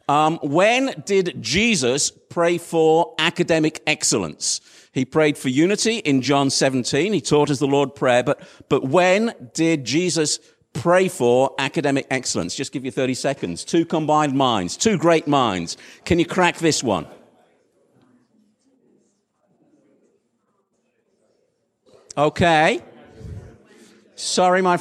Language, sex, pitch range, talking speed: English, male, 145-185 Hz, 120 wpm